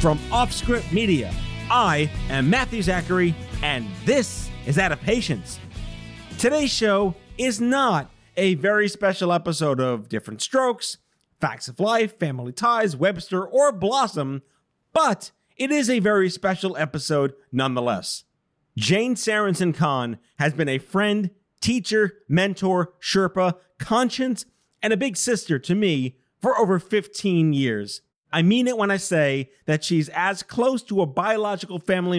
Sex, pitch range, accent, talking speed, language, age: male, 150-200 Hz, American, 140 wpm, English, 40-59